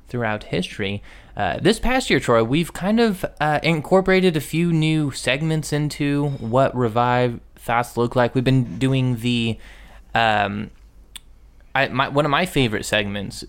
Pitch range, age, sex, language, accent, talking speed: 110-145 Hz, 20-39, male, English, American, 150 wpm